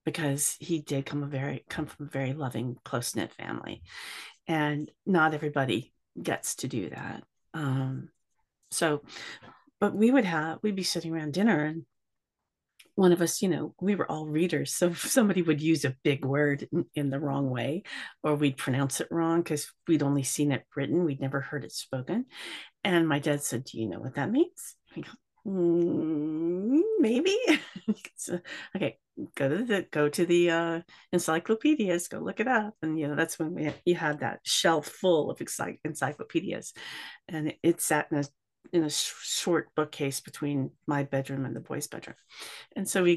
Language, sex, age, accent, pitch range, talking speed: English, female, 40-59, American, 140-175 Hz, 180 wpm